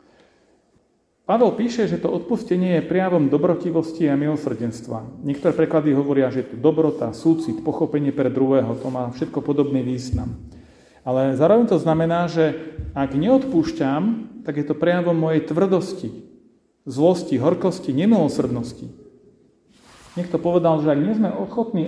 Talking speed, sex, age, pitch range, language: 130 wpm, male, 40-59, 135-170 Hz, Slovak